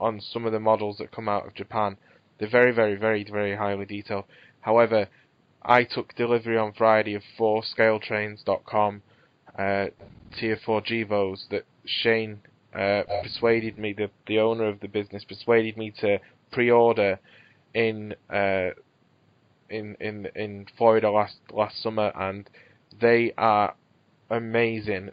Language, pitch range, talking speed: English, 105-120 Hz, 140 wpm